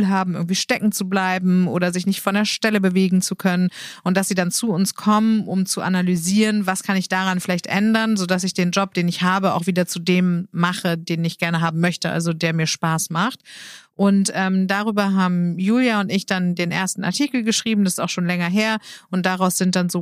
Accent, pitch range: German, 175-195 Hz